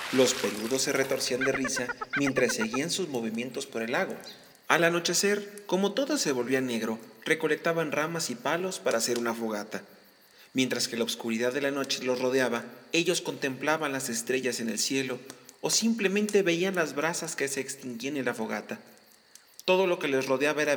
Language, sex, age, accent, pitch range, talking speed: Spanish, male, 40-59, Mexican, 125-170 Hz, 175 wpm